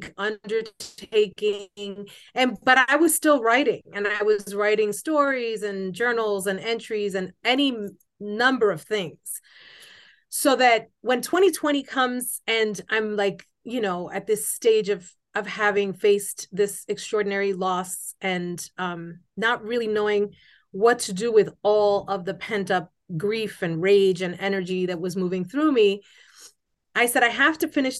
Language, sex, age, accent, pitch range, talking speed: English, female, 30-49, American, 195-235 Hz, 150 wpm